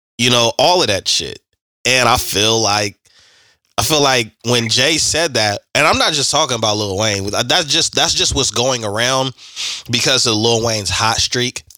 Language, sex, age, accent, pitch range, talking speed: English, male, 20-39, American, 100-120 Hz, 195 wpm